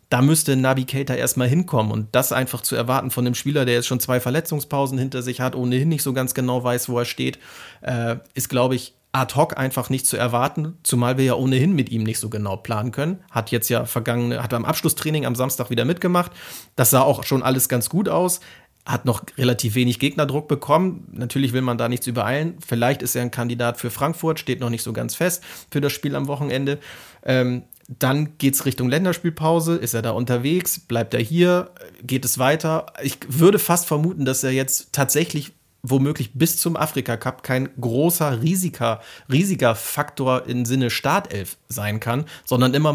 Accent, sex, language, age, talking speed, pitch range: German, male, German, 30-49, 195 wpm, 125-145 Hz